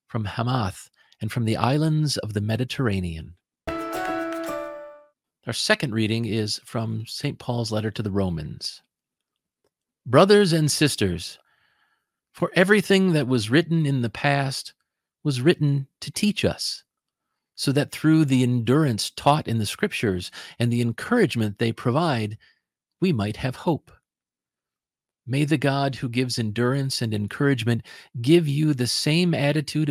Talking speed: 135 wpm